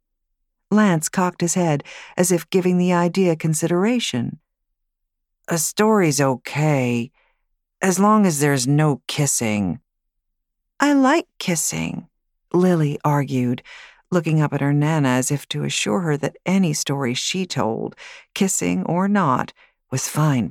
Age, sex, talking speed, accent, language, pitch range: 50-69, female, 130 wpm, American, English, 115-175 Hz